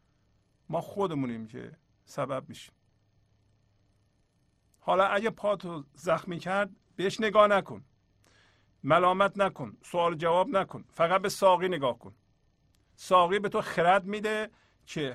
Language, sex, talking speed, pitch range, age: Persian, male, 120 wpm, 125-200 Hz, 50-69